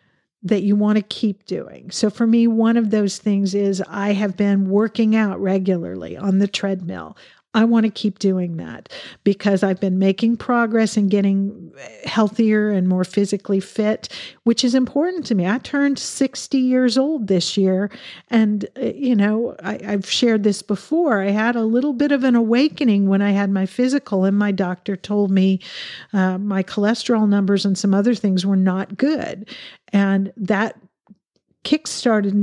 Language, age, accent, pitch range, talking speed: English, 50-69, American, 195-230 Hz, 170 wpm